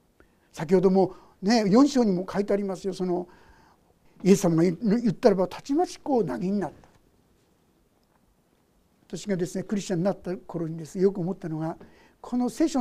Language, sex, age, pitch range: Japanese, male, 60-79, 185-275 Hz